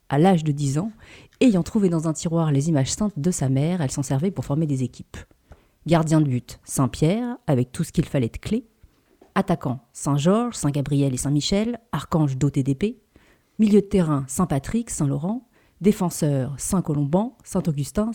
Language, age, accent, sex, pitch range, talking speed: French, 40-59, French, female, 140-195 Hz, 165 wpm